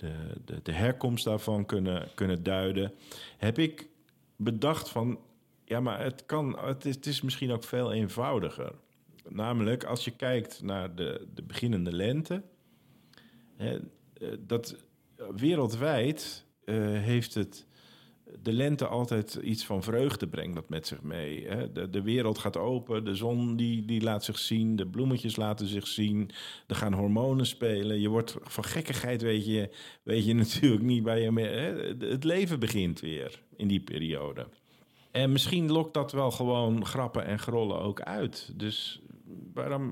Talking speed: 160 wpm